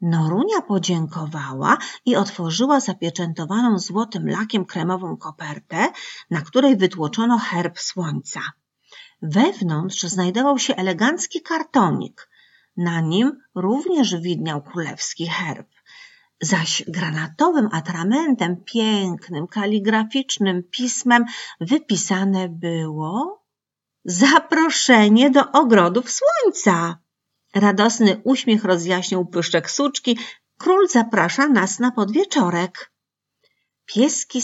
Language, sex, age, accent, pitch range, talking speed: Polish, female, 40-59, native, 175-255 Hz, 85 wpm